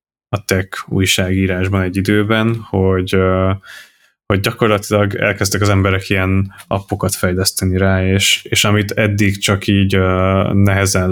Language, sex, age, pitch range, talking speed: Hungarian, male, 20-39, 95-100 Hz, 120 wpm